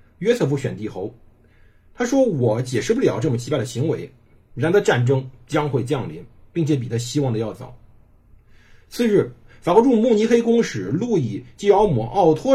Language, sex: Chinese, male